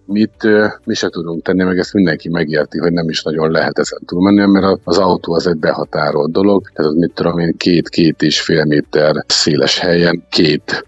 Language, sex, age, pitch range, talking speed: Hungarian, male, 50-69, 85-100 Hz, 195 wpm